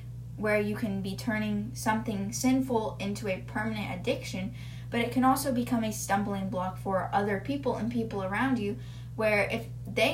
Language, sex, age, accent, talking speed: English, female, 10-29, American, 170 wpm